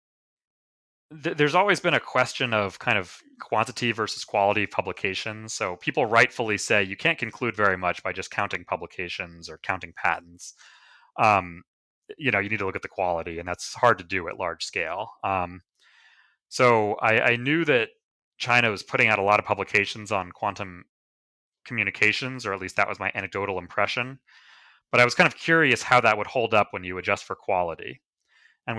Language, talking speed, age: English, 185 wpm, 30-49